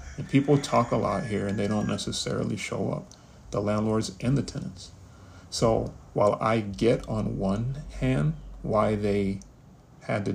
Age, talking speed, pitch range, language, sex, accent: 40-59, 160 wpm, 100-115 Hz, English, male, American